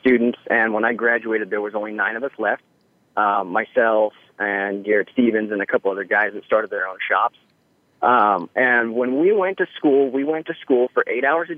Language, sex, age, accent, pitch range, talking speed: English, male, 30-49, American, 110-140 Hz, 220 wpm